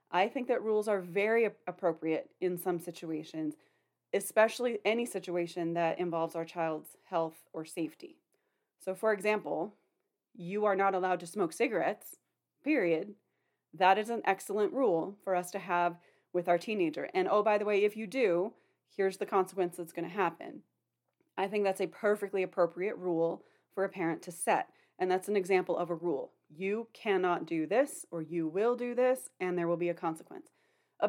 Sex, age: female, 30-49